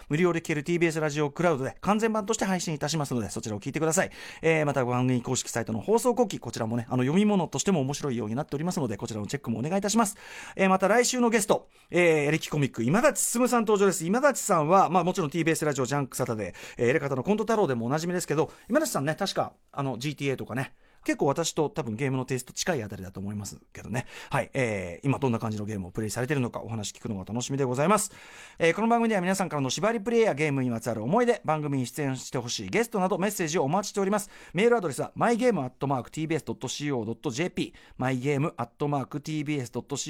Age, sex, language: 40-59, male, Japanese